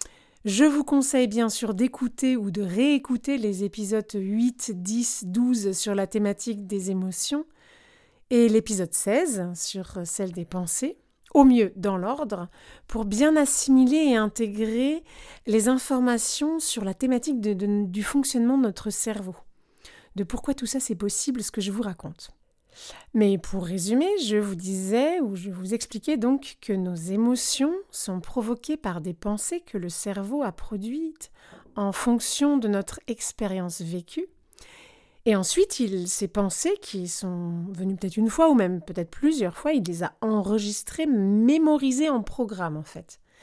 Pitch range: 200-265 Hz